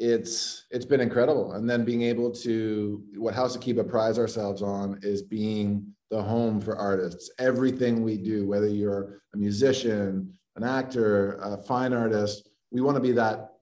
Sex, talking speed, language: male, 165 wpm, English